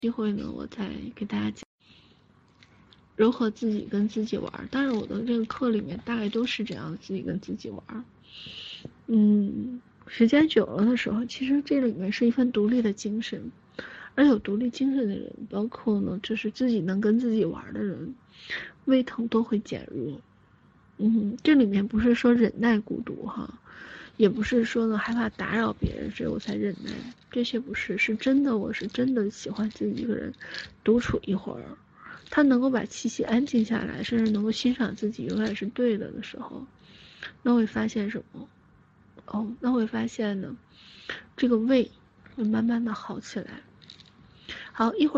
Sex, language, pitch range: female, Chinese, 210-240 Hz